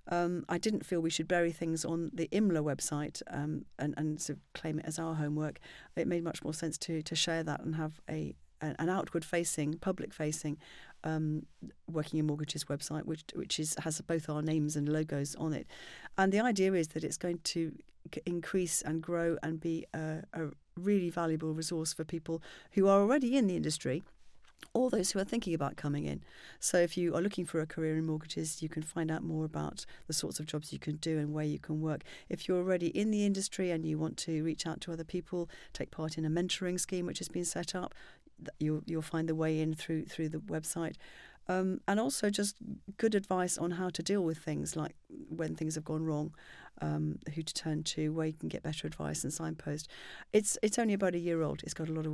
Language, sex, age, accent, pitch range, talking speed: English, female, 40-59, British, 155-175 Hz, 220 wpm